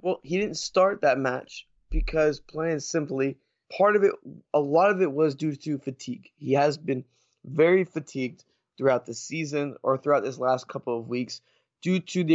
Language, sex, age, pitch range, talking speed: English, male, 20-39, 135-170 Hz, 185 wpm